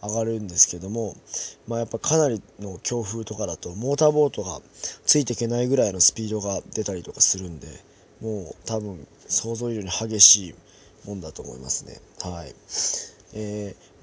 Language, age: Japanese, 20-39